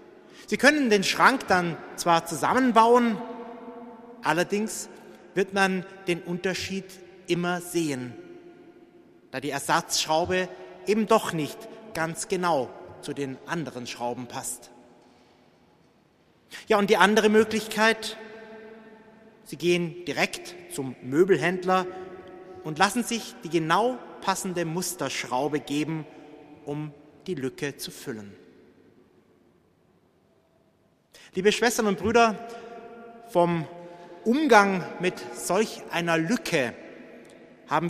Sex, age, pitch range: male, 30-49, 150-220 Hz